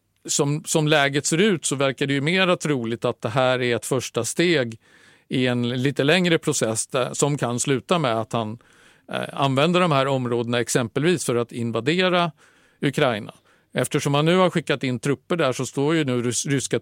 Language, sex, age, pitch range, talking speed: Swedish, male, 50-69, 120-155 Hz, 190 wpm